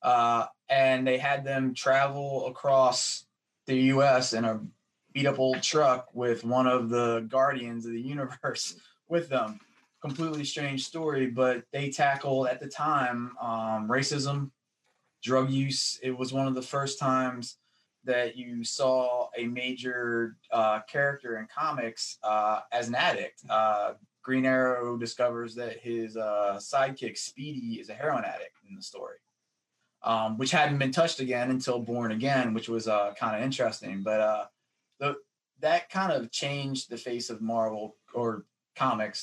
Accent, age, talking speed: American, 20-39, 155 wpm